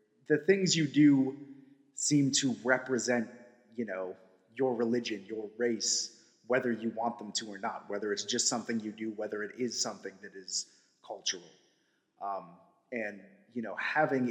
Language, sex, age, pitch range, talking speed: English, male, 30-49, 105-135 Hz, 160 wpm